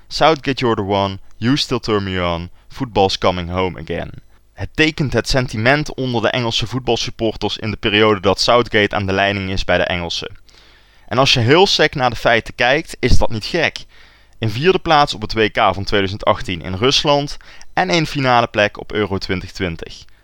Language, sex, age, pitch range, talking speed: Dutch, male, 20-39, 100-125 Hz, 185 wpm